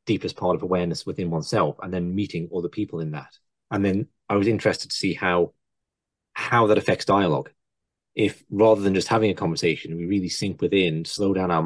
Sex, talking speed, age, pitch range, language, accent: male, 200 wpm, 30-49, 85-105 Hz, English, British